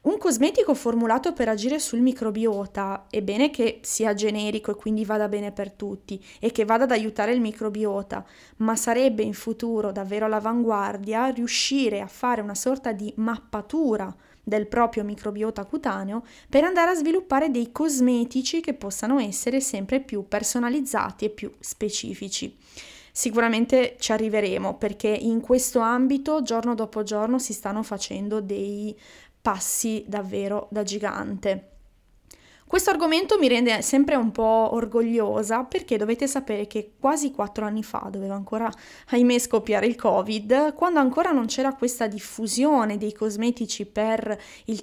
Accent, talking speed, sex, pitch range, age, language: native, 145 wpm, female, 210-260 Hz, 20-39, Italian